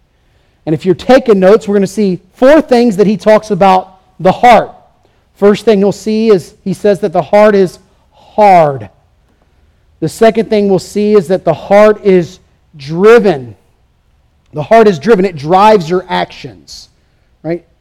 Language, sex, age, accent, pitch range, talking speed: English, male, 40-59, American, 165-205 Hz, 165 wpm